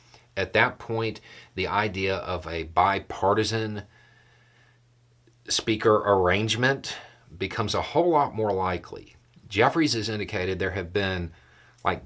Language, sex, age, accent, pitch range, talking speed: English, male, 40-59, American, 90-120 Hz, 115 wpm